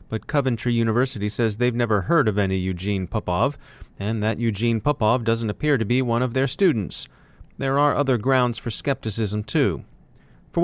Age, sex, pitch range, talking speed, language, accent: 30-49, male, 110-135 Hz, 175 wpm, English, American